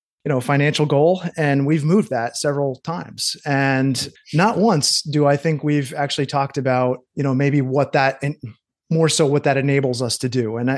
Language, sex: English, male